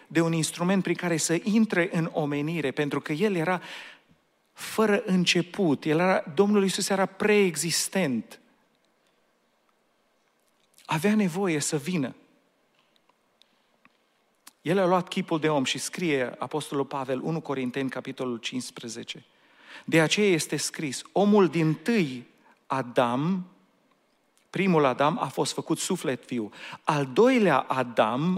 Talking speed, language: 120 wpm, Romanian